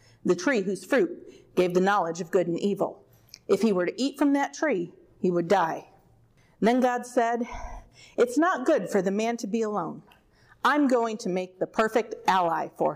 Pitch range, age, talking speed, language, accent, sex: 185-250 Hz, 40-59, 195 wpm, English, American, female